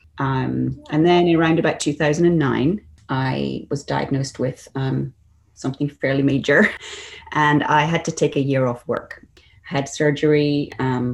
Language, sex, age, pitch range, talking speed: English, female, 30-49, 120-145 Hz, 140 wpm